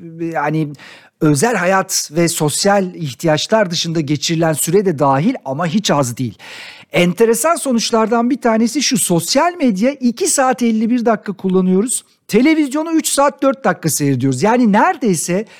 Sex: male